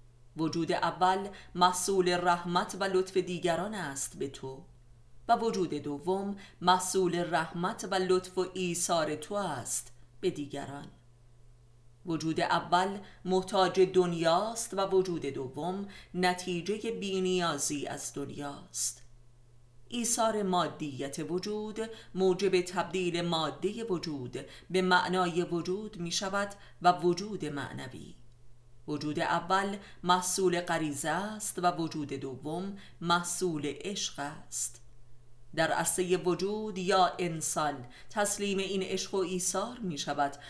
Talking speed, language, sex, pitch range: 110 wpm, Persian, female, 145-185 Hz